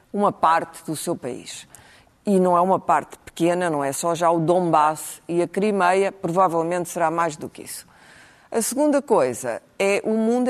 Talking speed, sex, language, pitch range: 185 wpm, female, Portuguese, 150-180 Hz